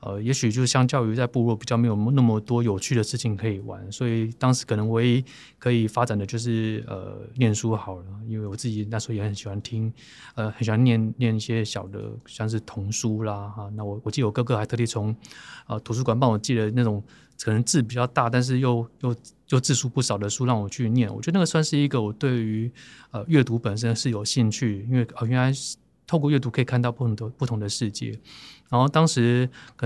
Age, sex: 20-39, male